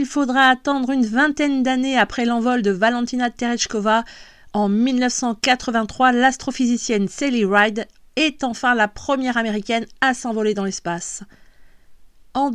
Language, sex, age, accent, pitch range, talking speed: French, female, 40-59, French, 200-255 Hz, 125 wpm